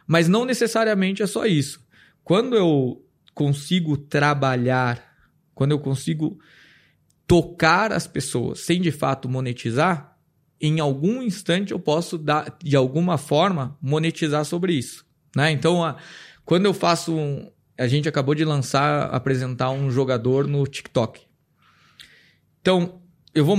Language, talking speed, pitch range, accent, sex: Portuguese, 130 wpm, 140-175 Hz, Brazilian, male